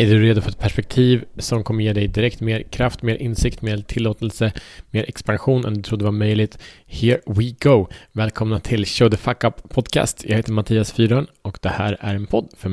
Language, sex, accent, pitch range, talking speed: Swedish, male, Norwegian, 105-130 Hz, 210 wpm